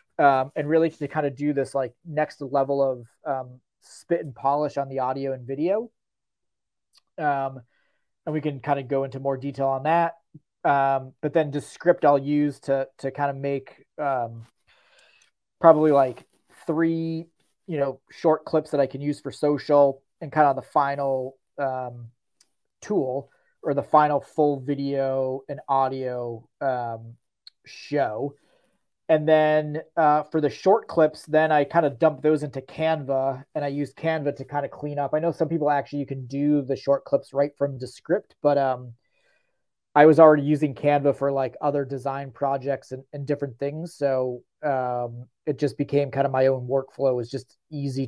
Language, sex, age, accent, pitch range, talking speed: English, male, 30-49, American, 130-150 Hz, 180 wpm